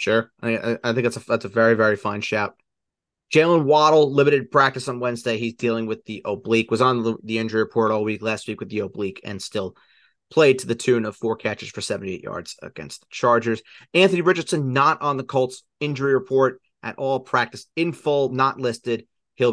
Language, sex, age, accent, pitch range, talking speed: English, male, 30-49, American, 110-145 Hz, 205 wpm